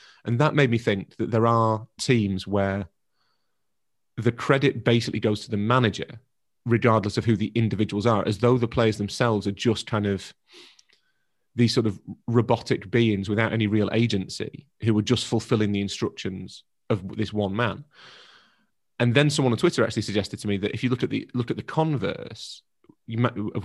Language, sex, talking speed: English, male, 185 wpm